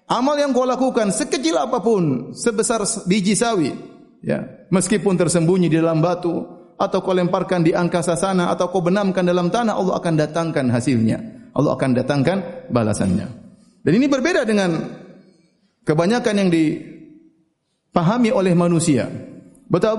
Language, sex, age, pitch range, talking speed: Indonesian, male, 30-49, 170-235 Hz, 130 wpm